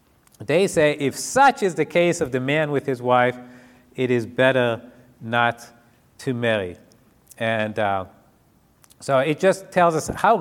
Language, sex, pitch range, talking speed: English, male, 115-140 Hz, 155 wpm